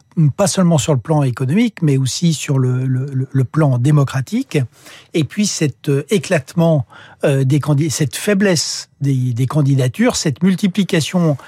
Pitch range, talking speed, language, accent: 135-165 Hz, 135 wpm, French, French